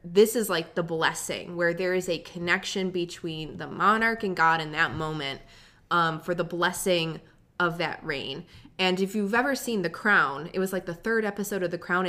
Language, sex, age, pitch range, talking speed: English, female, 20-39, 165-195 Hz, 205 wpm